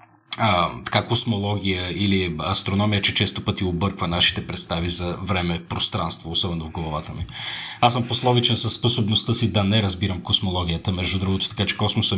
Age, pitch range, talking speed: 30-49, 95-120 Hz, 160 wpm